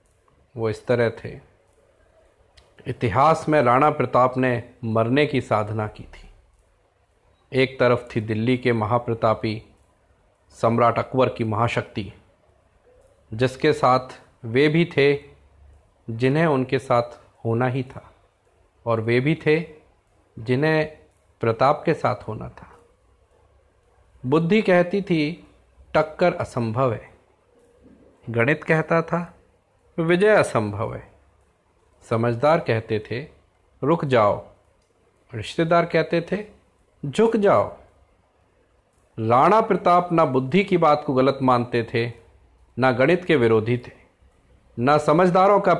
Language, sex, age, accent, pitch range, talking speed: Hindi, male, 40-59, native, 110-155 Hz, 110 wpm